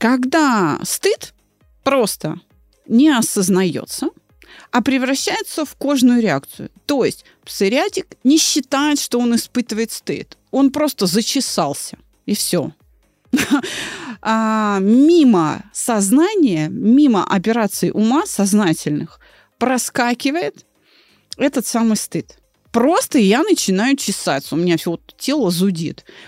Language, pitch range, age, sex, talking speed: Russian, 190-280 Hz, 30-49, female, 105 wpm